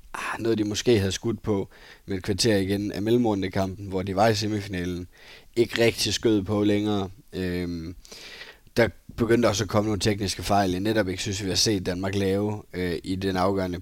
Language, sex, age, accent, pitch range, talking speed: Danish, male, 20-39, native, 95-105 Hz, 185 wpm